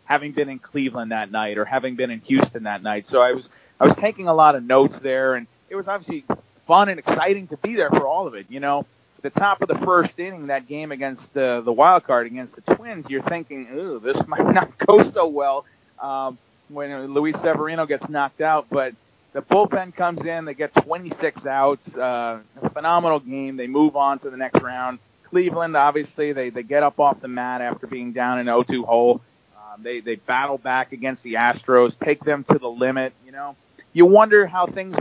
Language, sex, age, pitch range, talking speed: English, male, 30-49, 130-160 Hz, 215 wpm